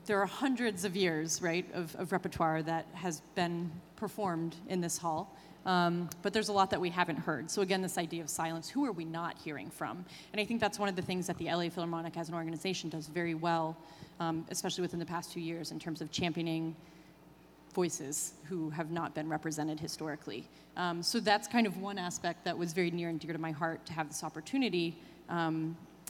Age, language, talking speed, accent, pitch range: 30-49, English, 215 wpm, American, 165-200 Hz